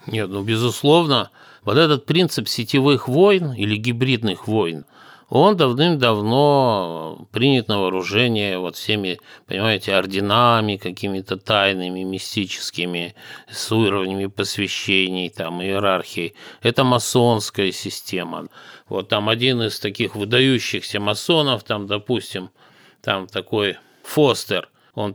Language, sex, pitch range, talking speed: Russian, male, 100-130 Hz, 105 wpm